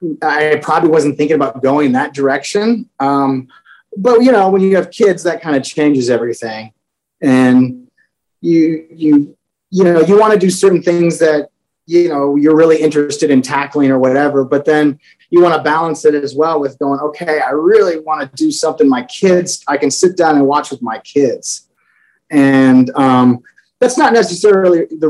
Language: English